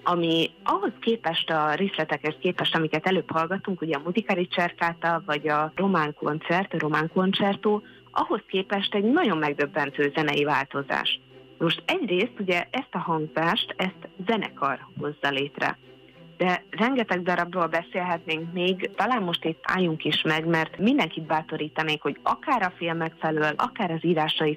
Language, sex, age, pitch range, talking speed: Hungarian, female, 30-49, 150-180 Hz, 145 wpm